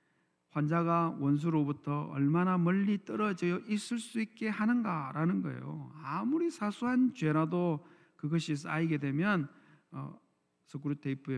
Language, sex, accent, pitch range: Korean, male, native, 140-200 Hz